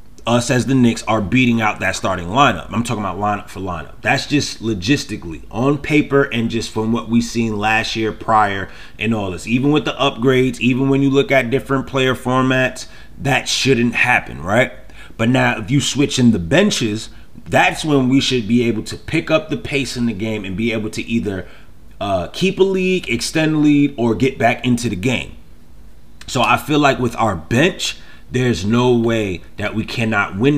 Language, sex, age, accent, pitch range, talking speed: English, male, 30-49, American, 110-130 Hz, 200 wpm